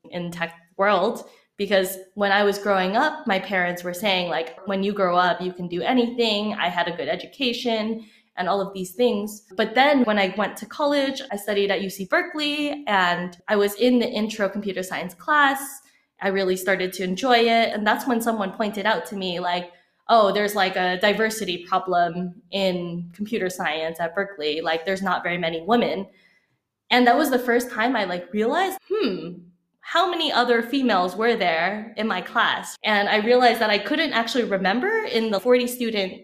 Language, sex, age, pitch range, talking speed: English, female, 20-39, 185-235 Hz, 190 wpm